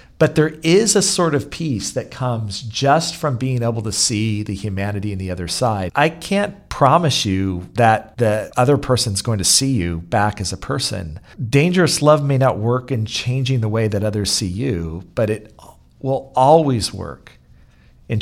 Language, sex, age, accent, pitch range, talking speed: English, male, 40-59, American, 100-130 Hz, 185 wpm